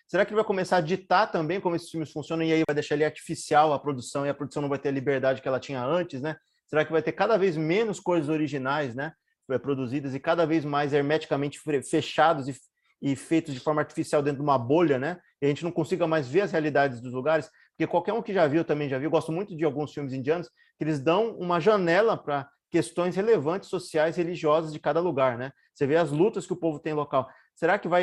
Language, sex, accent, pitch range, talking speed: Portuguese, male, Brazilian, 145-180 Hz, 245 wpm